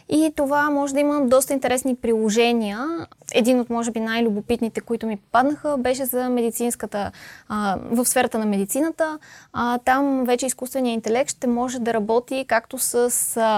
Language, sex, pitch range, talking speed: Bulgarian, female, 215-260 Hz, 160 wpm